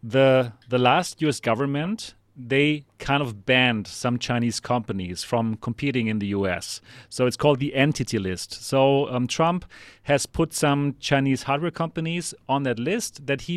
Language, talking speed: English, 165 wpm